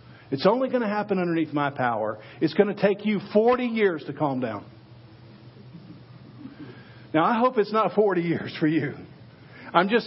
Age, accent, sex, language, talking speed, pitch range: 50-69, American, male, English, 175 wpm, 130-195 Hz